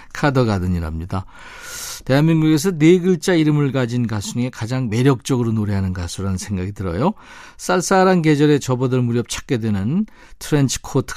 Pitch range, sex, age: 115-160 Hz, male, 40-59